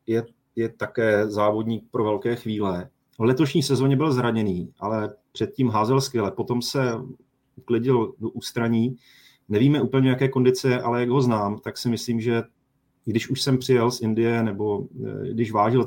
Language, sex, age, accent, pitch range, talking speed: Czech, male, 30-49, native, 105-120 Hz, 160 wpm